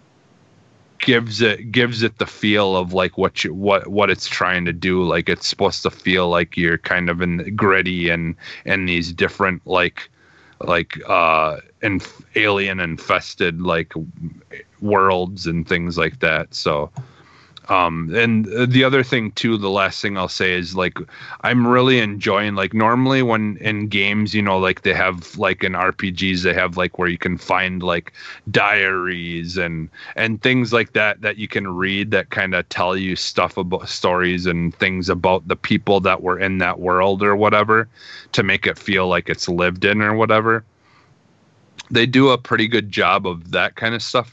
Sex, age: male, 30-49